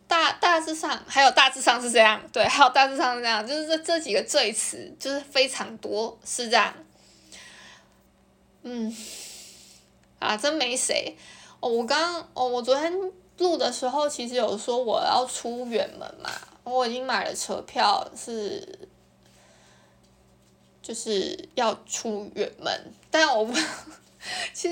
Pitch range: 215-320 Hz